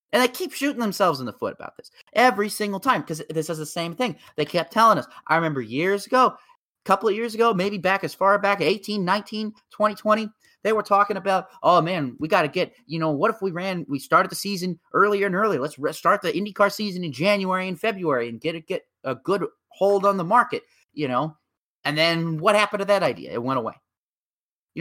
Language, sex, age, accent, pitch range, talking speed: English, male, 30-49, American, 150-210 Hz, 225 wpm